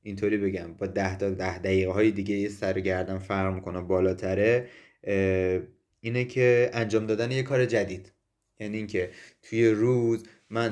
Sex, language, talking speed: male, Persian, 145 wpm